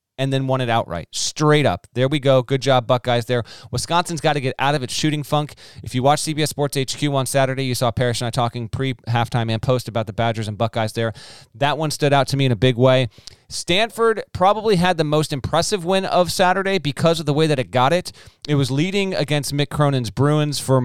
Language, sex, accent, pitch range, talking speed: English, male, American, 120-155 Hz, 235 wpm